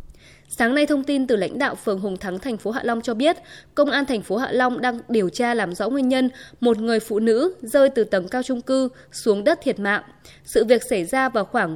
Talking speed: 250 wpm